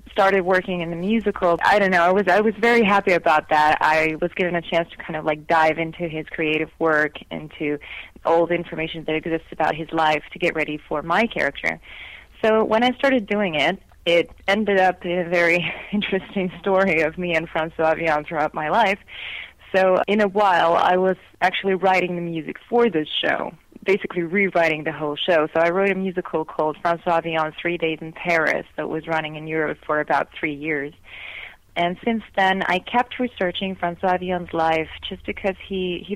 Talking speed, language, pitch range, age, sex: 195 wpm, English, 160-190 Hz, 20-39, female